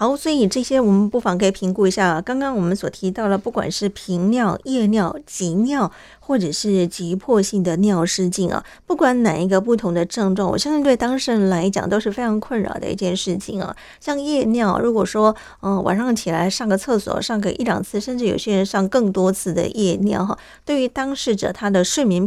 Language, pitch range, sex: Chinese, 185-230 Hz, female